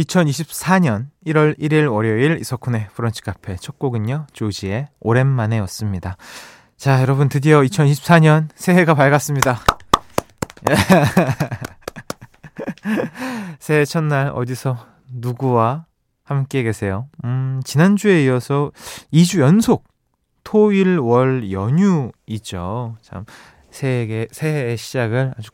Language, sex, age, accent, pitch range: Korean, male, 20-39, native, 110-150 Hz